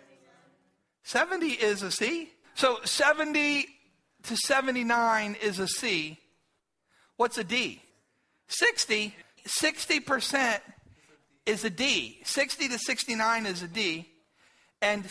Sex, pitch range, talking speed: male, 215-285 Hz, 105 wpm